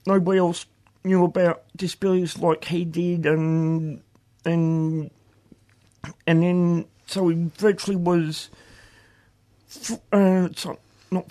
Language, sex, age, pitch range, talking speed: English, male, 40-59, 110-170 Hz, 100 wpm